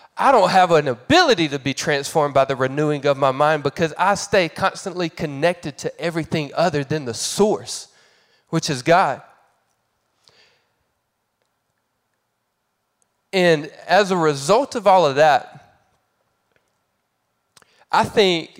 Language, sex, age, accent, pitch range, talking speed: English, male, 20-39, American, 145-195 Hz, 125 wpm